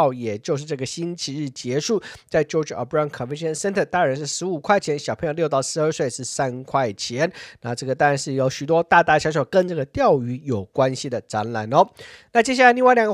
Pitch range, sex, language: 140-195 Hz, male, Chinese